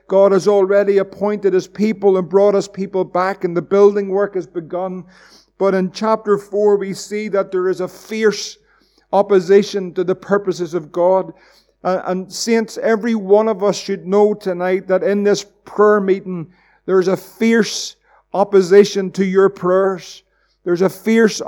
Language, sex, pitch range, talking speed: English, male, 190-210 Hz, 170 wpm